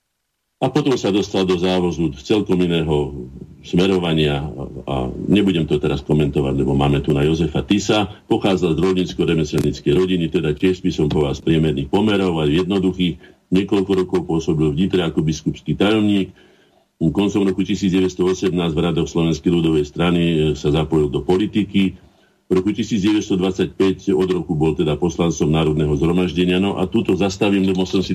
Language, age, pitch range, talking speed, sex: Slovak, 50-69, 80-95 Hz, 150 wpm, male